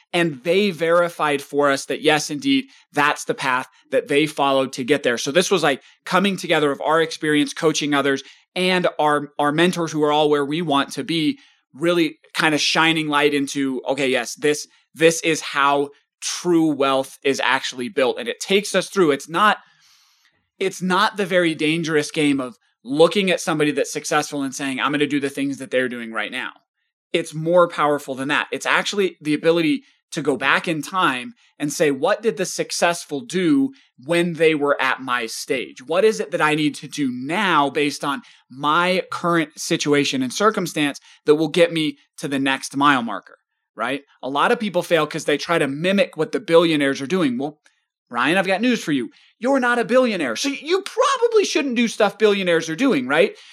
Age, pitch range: 20-39, 145-195 Hz